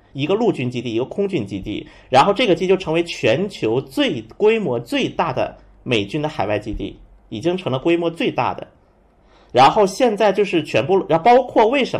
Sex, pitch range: male, 155-210 Hz